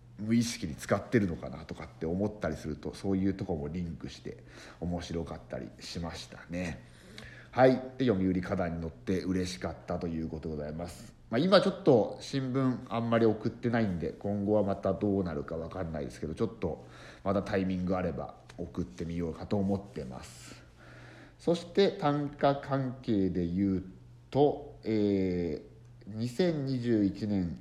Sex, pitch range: male, 85-120 Hz